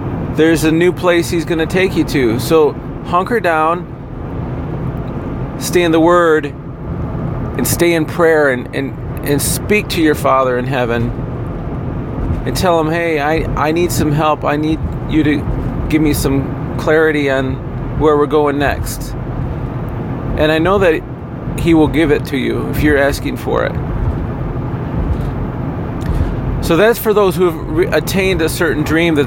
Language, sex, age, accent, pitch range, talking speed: English, male, 40-59, American, 130-160 Hz, 160 wpm